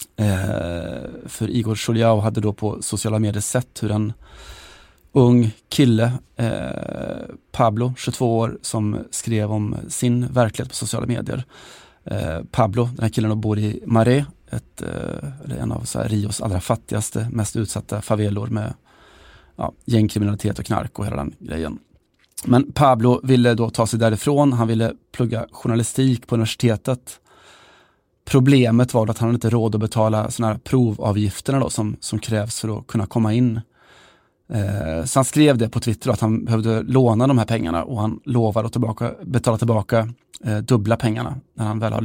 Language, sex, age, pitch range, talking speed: Swedish, male, 30-49, 110-120 Hz, 165 wpm